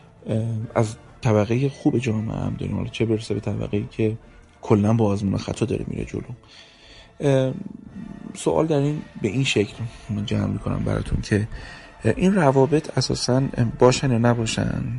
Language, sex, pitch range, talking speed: Persian, male, 105-135 Hz, 130 wpm